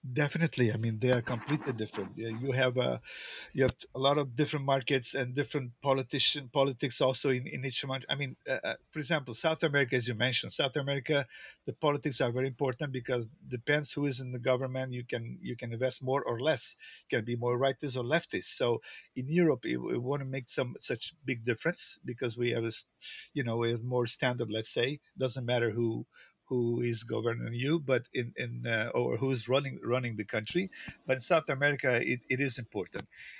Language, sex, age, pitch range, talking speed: English, male, 50-69, 120-140 Hz, 205 wpm